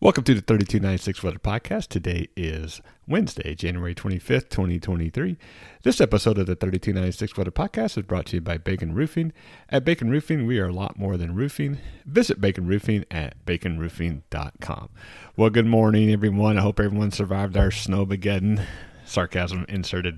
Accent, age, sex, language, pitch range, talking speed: American, 40-59, male, English, 85-105 Hz, 160 wpm